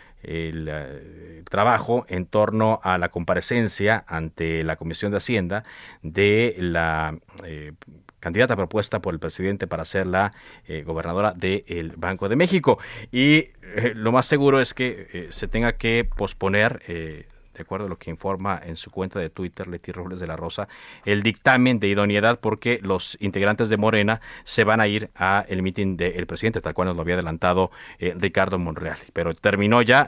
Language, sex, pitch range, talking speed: Spanish, male, 90-125 Hz, 175 wpm